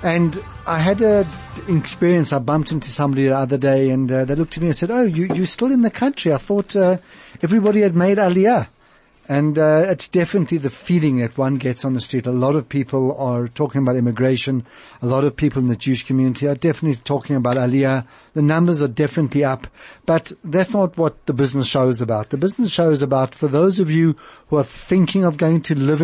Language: English